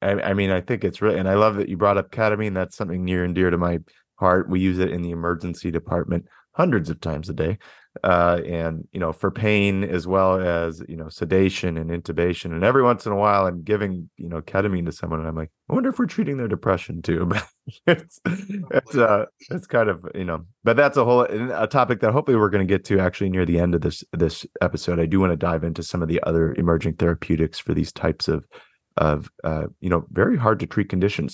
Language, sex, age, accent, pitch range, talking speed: English, male, 30-49, American, 85-105 Hz, 245 wpm